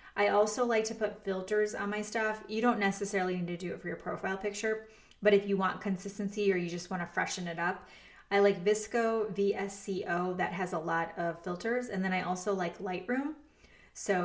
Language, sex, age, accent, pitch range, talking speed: English, female, 20-39, American, 185-220 Hz, 210 wpm